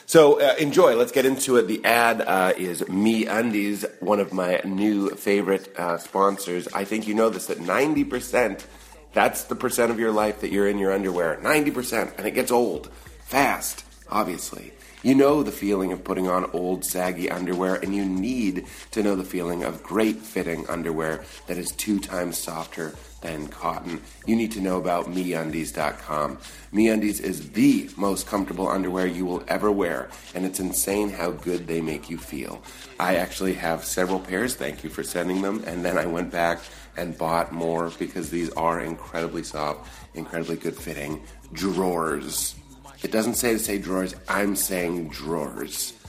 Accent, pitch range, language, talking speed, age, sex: American, 85-105 Hz, English, 170 wpm, 30-49, male